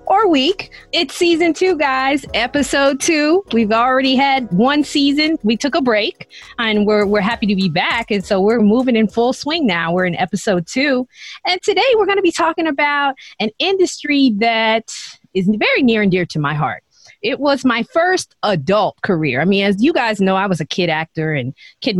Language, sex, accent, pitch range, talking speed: English, female, American, 190-295 Hz, 200 wpm